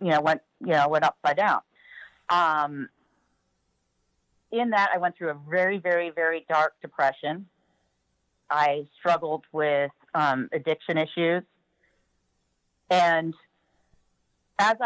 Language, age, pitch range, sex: English, 40-59, 145-185 Hz, female